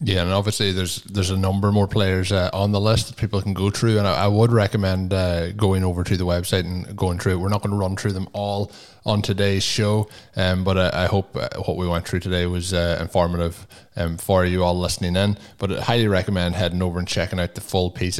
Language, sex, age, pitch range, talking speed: English, male, 20-39, 90-105 Hz, 255 wpm